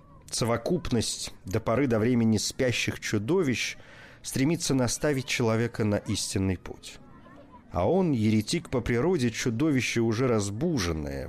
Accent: native